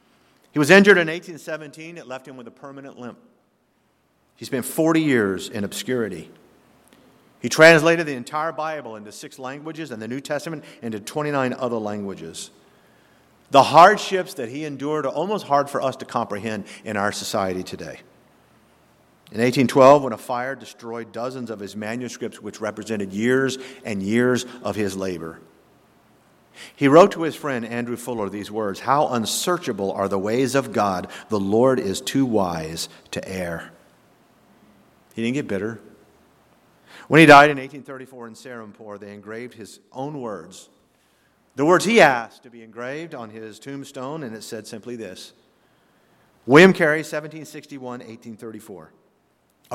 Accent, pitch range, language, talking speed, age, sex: American, 105-150 Hz, English, 150 wpm, 50-69, male